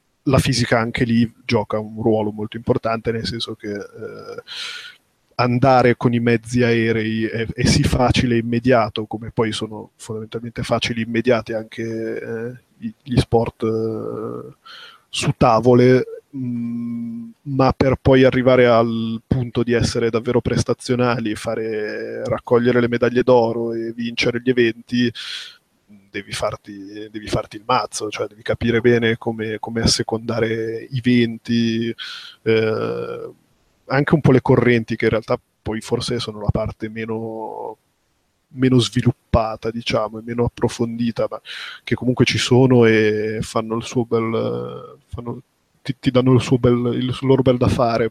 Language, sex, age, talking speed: Italian, male, 20-39, 145 wpm